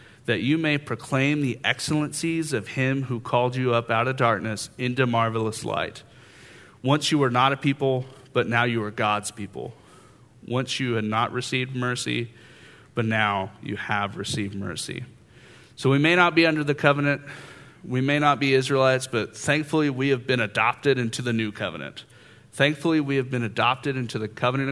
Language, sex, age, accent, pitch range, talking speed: English, male, 40-59, American, 115-140 Hz, 175 wpm